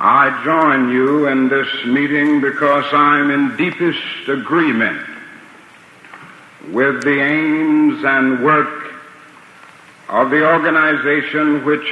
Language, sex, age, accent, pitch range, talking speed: English, male, 60-79, American, 140-155 Hz, 100 wpm